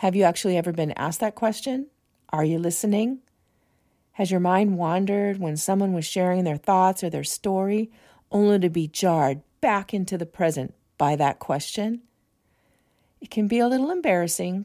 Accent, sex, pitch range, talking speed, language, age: American, female, 165-215 Hz, 170 wpm, English, 40-59